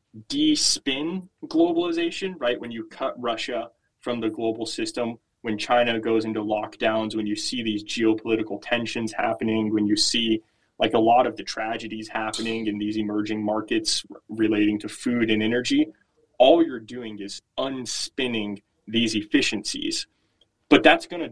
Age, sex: 20-39, male